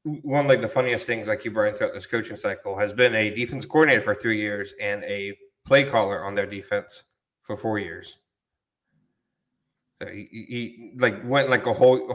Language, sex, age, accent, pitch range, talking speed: English, male, 20-39, American, 100-125 Hz, 190 wpm